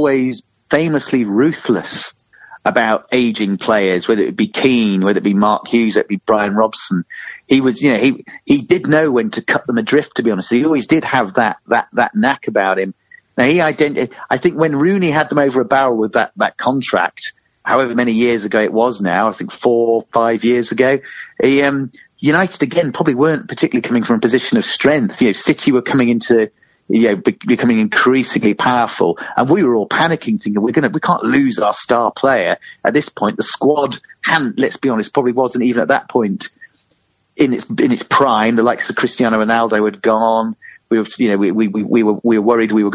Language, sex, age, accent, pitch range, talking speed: English, male, 40-59, British, 110-145 Hz, 220 wpm